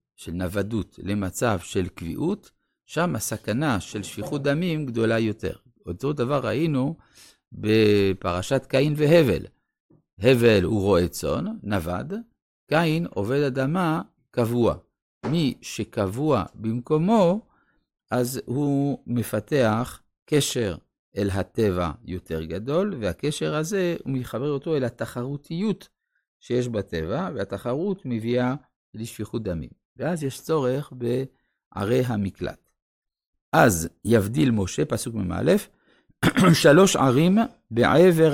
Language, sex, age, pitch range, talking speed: Hebrew, male, 50-69, 105-150 Hz, 100 wpm